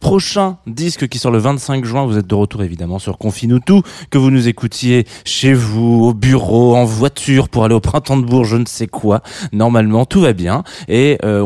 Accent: French